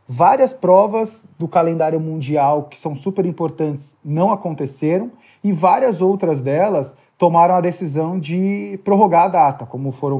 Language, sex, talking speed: Portuguese, male, 140 wpm